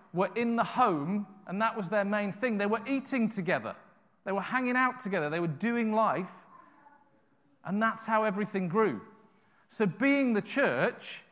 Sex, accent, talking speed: male, British, 170 wpm